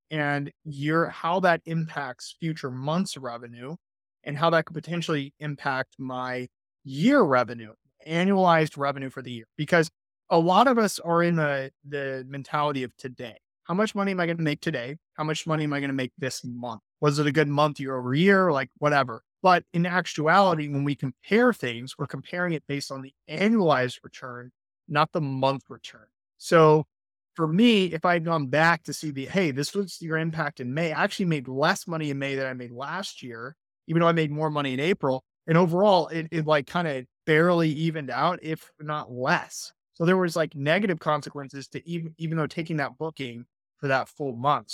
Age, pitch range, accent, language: 30-49, 135-170 Hz, American, English